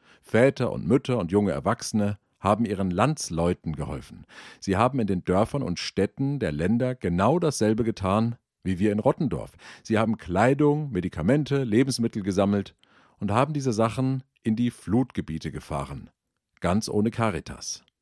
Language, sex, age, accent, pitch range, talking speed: German, male, 50-69, German, 90-125 Hz, 145 wpm